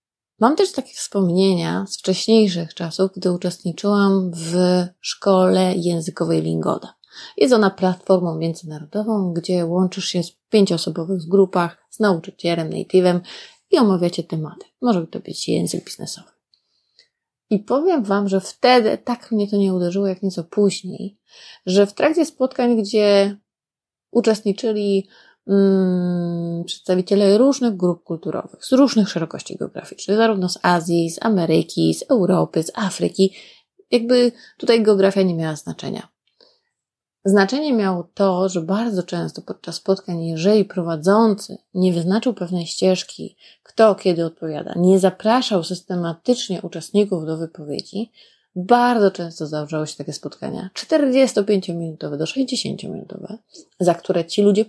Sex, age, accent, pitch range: female, 30-49, native, 175-215 Hz